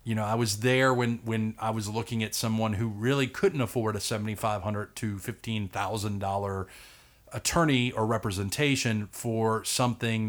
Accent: American